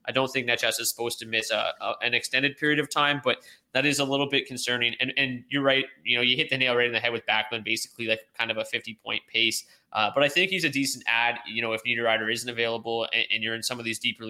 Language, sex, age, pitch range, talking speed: English, male, 20-39, 115-135 Hz, 280 wpm